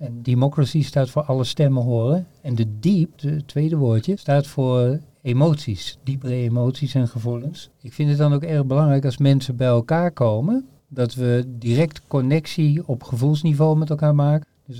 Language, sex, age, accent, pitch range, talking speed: Dutch, male, 50-69, Dutch, 125-150 Hz, 170 wpm